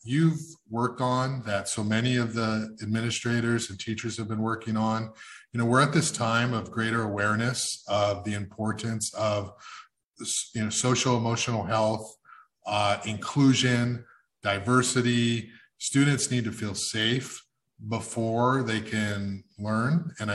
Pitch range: 110-130 Hz